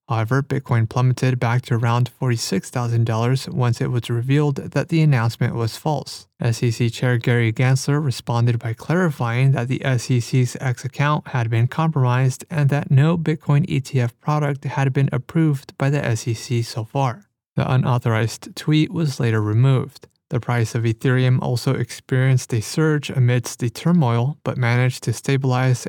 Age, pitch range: 30-49, 120-145 Hz